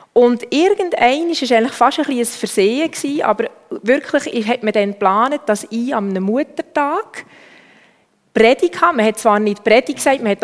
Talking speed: 170 wpm